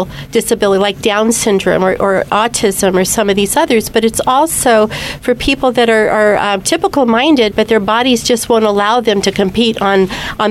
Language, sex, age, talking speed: English, female, 40-59, 190 wpm